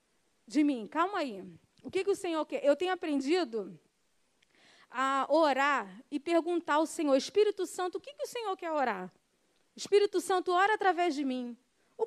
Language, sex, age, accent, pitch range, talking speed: Portuguese, female, 20-39, Brazilian, 280-365 Hz, 175 wpm